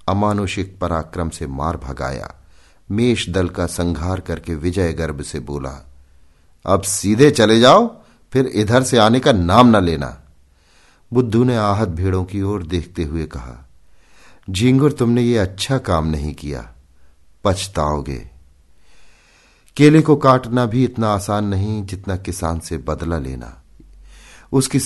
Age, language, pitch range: 50-69, Hindi, 75-105 Hz